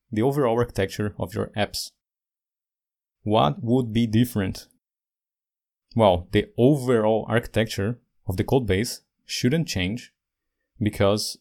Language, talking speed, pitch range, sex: English, 110 wpm, 100-120 Hz, male